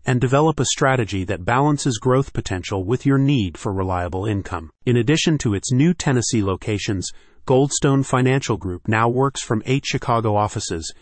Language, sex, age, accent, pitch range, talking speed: English, male, 30-49, American, 105-135 Hz, 165 wpm